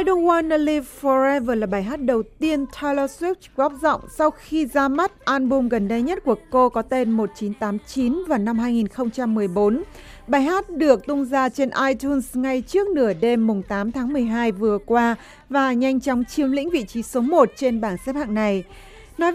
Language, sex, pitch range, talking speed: Vietnamese, female, 220-285 Hz, 190 wpm